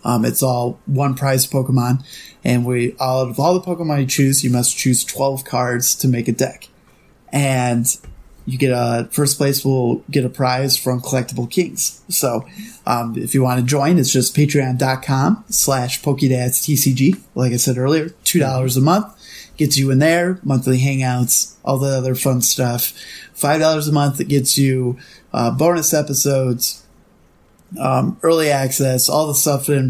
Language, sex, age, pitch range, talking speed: English, male, 20-39, 125-145 Hz, 170 wpm